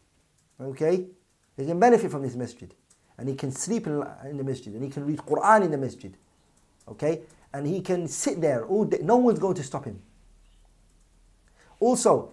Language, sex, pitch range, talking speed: English, male, 120-205 Hz, 175 wpm